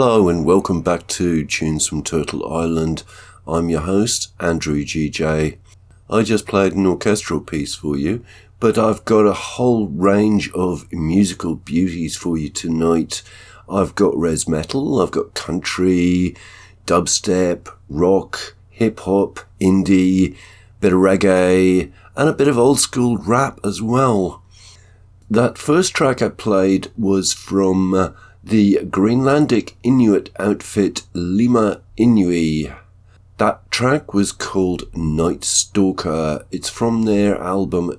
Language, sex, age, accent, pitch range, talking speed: English, male, 50-69, British, 90-105 Hz, 125 wpm